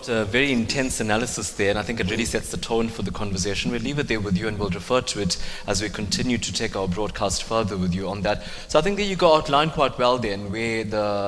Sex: male